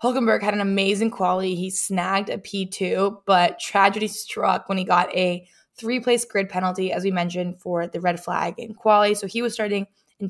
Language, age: English, 20-39